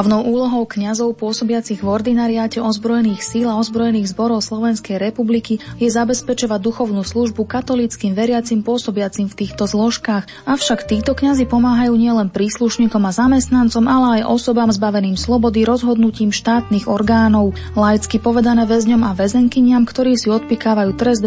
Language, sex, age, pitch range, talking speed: Slovak, female, 20-39, 205-235 Hz, 135 wpm